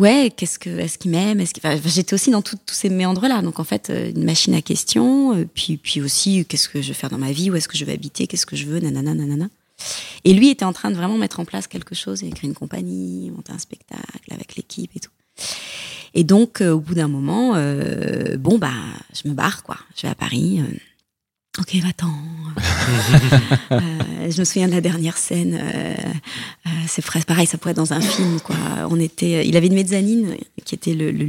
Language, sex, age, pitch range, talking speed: French, female, 20-39, 155-185 Hz, 220 wpm